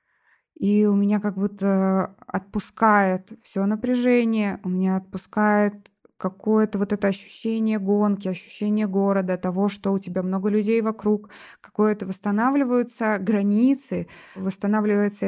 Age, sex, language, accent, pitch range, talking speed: 20-39, female, Russian, native, 175-205 Hz, 115 wpm